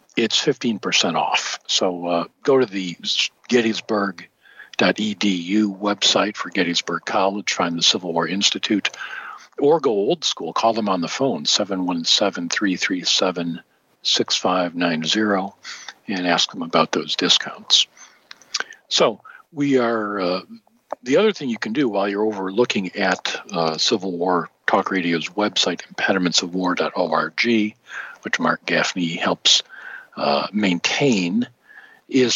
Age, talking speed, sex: 50-69, 120 wpm, male